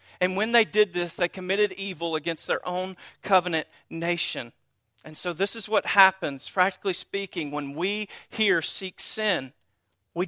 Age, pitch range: 40-59, 160-200 Hz